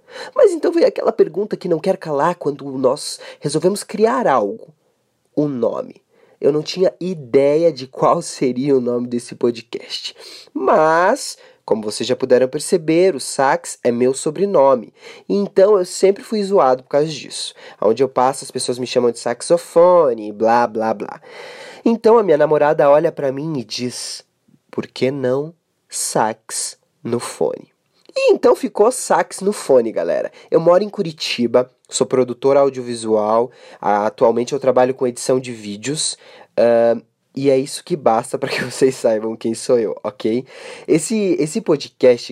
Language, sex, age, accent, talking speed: Portuguese, male, 20-39, Brazilian, 160 wpm